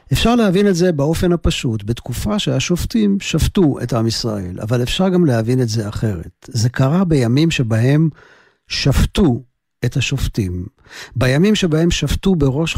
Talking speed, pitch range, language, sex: 140 wpm, 115-150 Hz, Hebrew, male